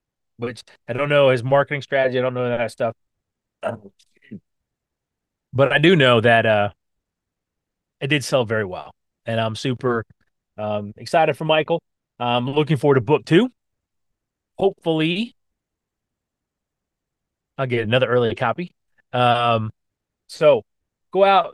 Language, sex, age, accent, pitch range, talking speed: English, male, 30-49, American, 115-155 Hz, 130 wpm